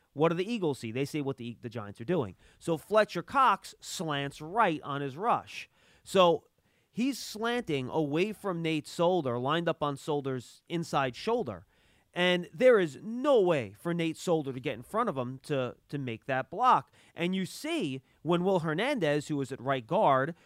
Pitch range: 125-180 Hz